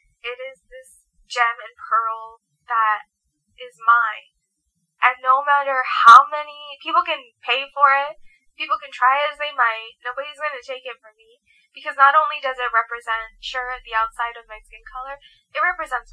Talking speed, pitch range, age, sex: 170 wpm, 225-275 Hz, 10-29, female